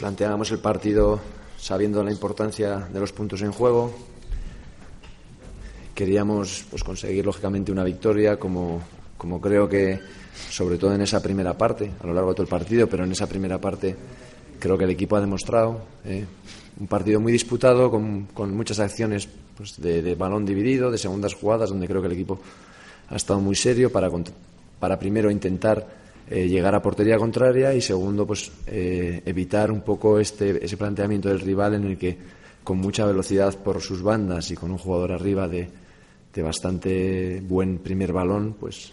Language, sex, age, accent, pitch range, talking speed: Spanish, male, 20-39, Spanish, 90-105 Hz, 175 wpm